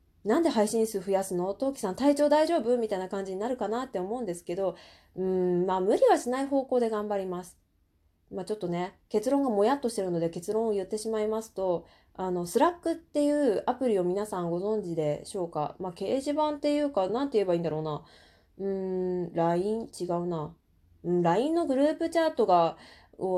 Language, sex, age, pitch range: Japanese, female, 20-39, 175-270 Hz